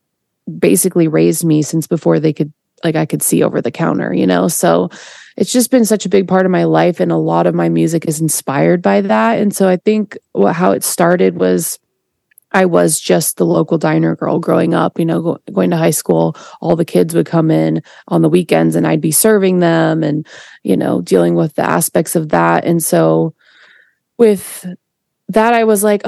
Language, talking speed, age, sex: English, 205 wpm, 20-39, female